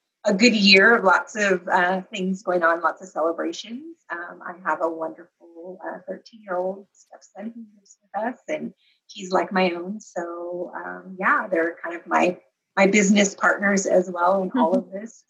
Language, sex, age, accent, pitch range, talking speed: English, female, 30-49, American, 175-200 Hz, 175 wpm